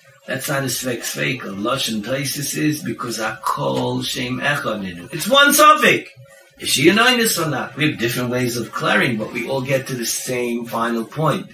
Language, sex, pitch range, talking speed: English, male, 115-155 Hz, 205 wpm